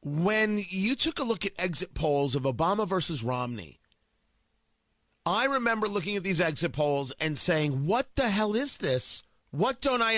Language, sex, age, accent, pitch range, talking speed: English, male, 40-59, American, 155-230 Hz, 170 wpm